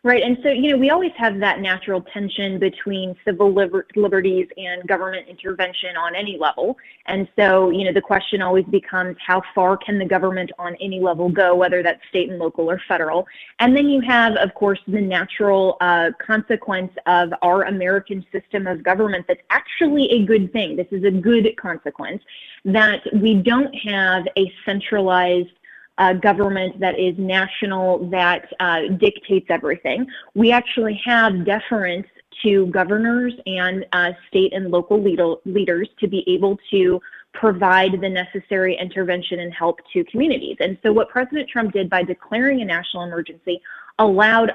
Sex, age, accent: female, 20-39, American